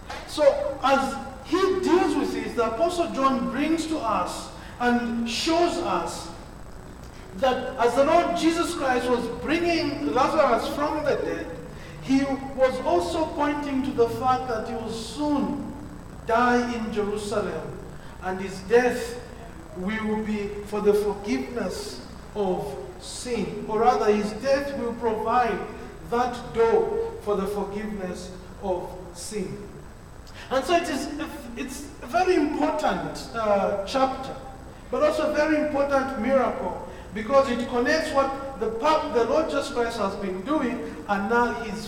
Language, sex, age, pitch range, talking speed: English, male, 50-69, 220-295 Hz, 135 wpm